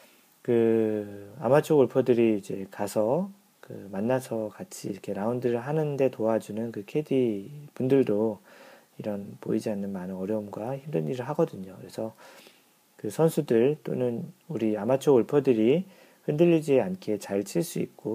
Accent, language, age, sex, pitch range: native, Korean, 40-59, male, 105-155 Hz